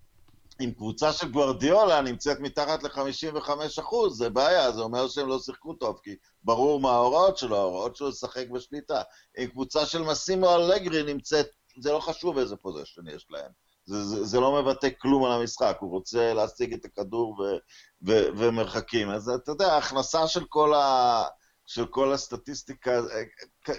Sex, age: male, 50-69